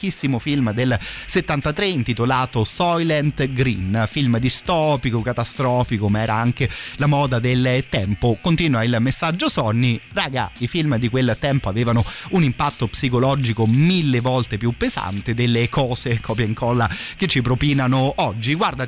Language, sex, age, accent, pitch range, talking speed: Italian, male, 30-49, native, 115-140 Hz, 140 wpm